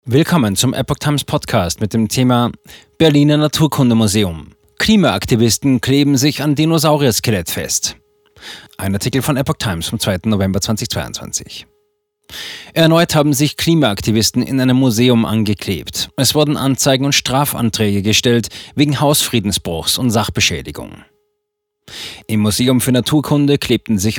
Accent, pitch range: German, 105-140 Hz